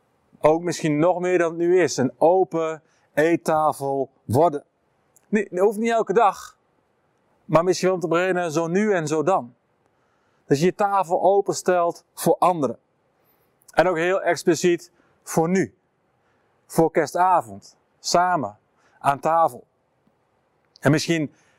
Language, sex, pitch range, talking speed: Dutch, male, 145-175 Hz, 130 wpm